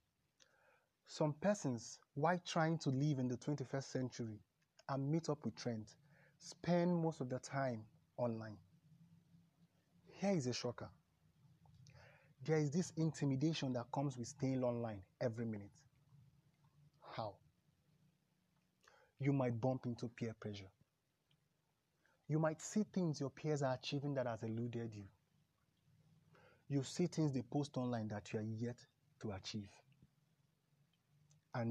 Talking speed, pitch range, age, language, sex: 130 wpm, 115-150 Hz, 30-49, English, male